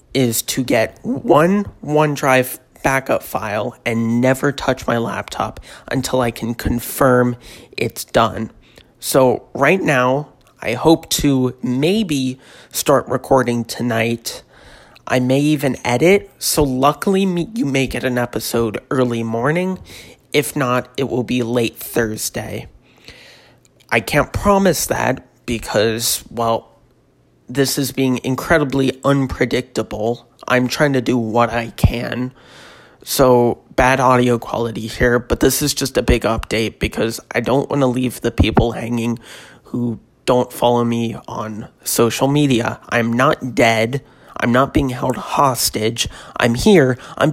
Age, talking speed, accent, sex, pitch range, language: 30-49, 135 wpm, American, male, 115-135 Hz, English